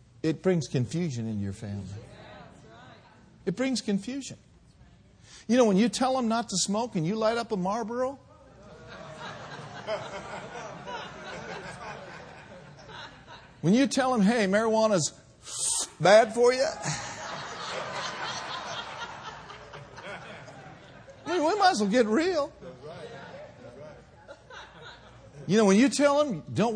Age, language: 50-69, English